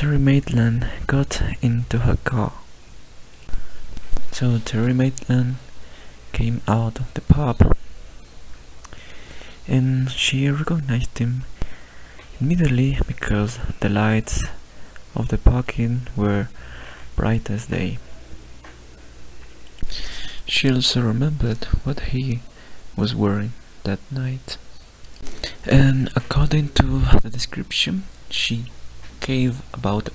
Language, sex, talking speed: English, male, 90 wpm